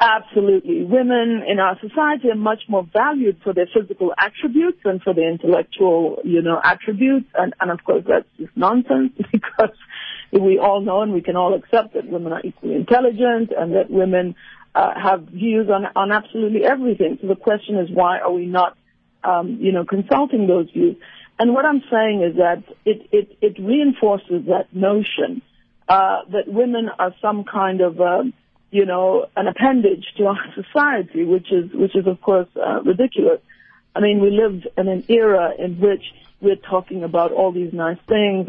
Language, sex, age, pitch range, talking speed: English, female, 50-69, 185-230 Hz, 180 wpm